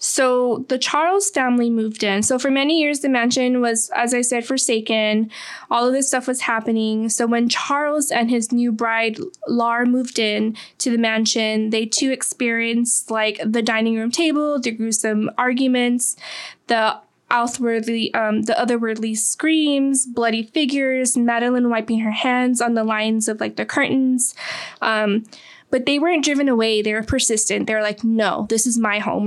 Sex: female